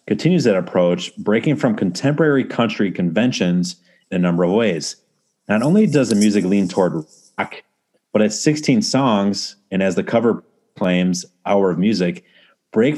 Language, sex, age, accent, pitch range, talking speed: English, male, 30-49, American, 90-105 Hz, 155 wpm